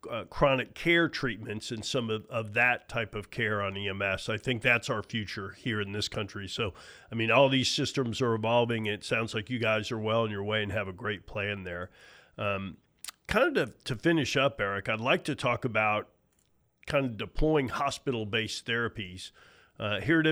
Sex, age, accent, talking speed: male, 40-59, American, 205 wpm